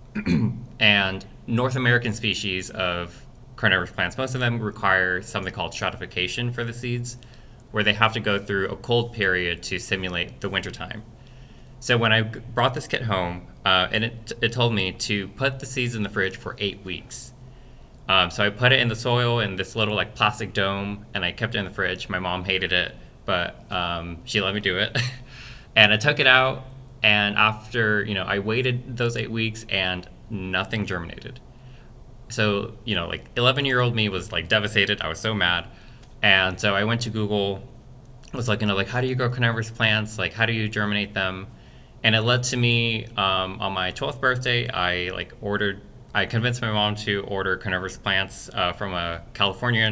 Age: 20-39